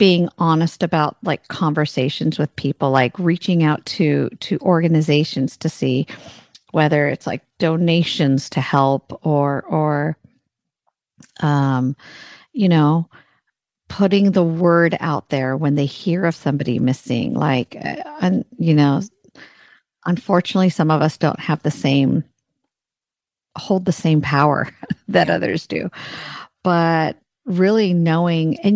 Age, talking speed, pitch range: 50-69, 125 wpm, 150-185 Hz